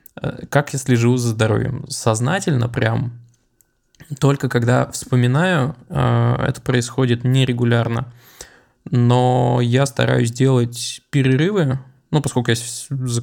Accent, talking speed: native, 100 wpm